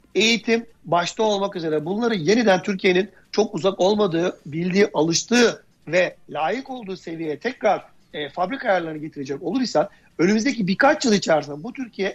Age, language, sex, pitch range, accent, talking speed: 60-79, Turkish, male, 170-235 Hz, native, 140 wpm